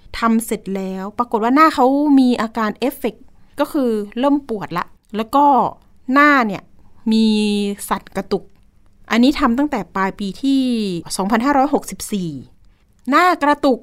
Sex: female